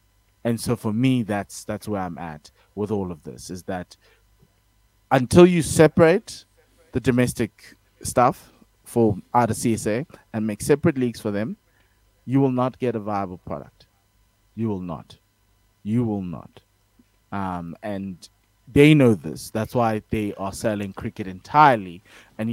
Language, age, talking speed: English, 20-39, 150 wpm